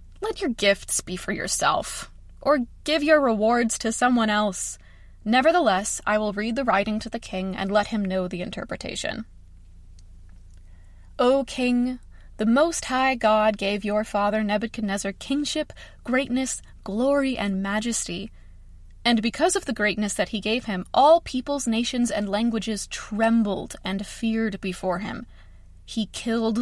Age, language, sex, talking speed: 20-39, English, female, 145 wpm